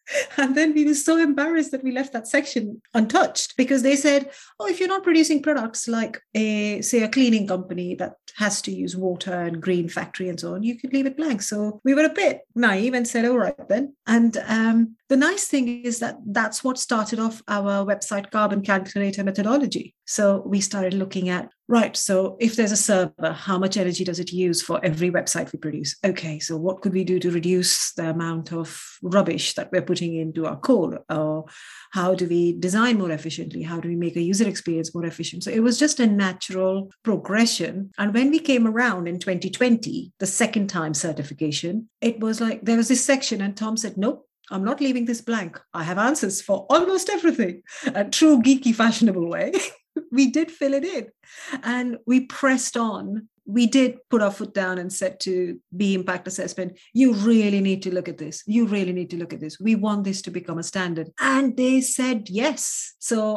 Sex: female